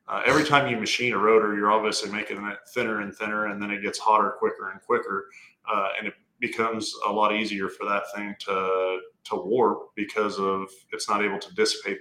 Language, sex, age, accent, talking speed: English, male, 20-39, American, 210 wpm